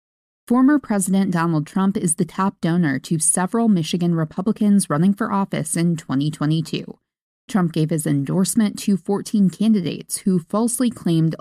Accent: American